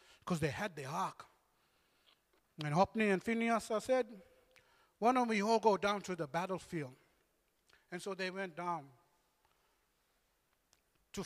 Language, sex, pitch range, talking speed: English, male, 170-230 Hz, 135 wpm